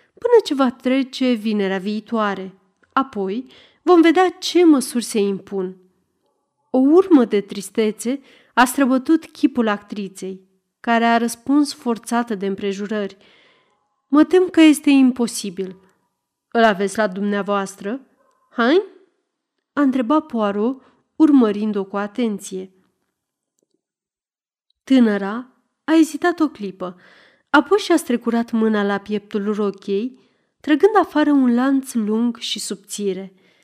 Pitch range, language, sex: 205-275 Hz, Romanian, female